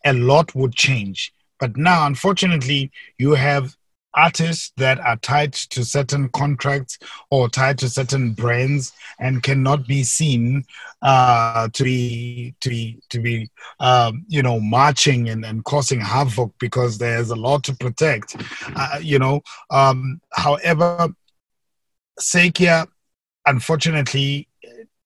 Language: English